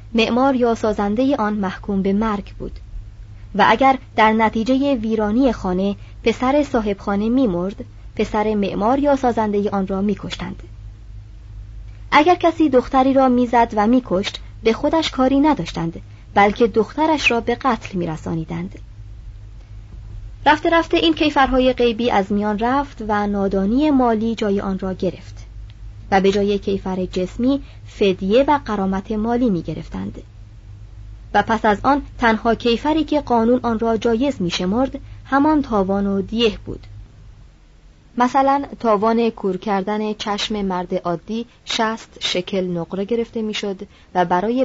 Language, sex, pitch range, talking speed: Persian, male, 165-240 Hz, 135 wpm